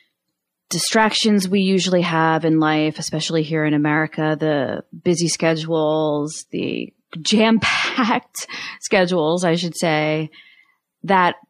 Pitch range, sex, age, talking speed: 155-185 Hz, female, 30-49, 110 wpm